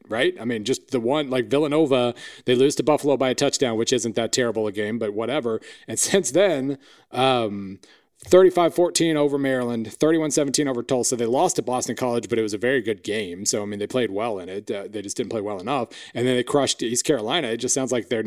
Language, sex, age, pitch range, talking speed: English, male, 30-49, 115-145 Hz, 235 wpm